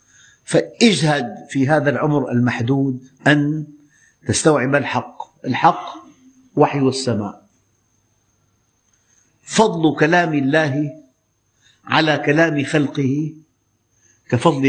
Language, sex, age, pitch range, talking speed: Arabic, male, 50-69, 120-155 Hz, 75 wpm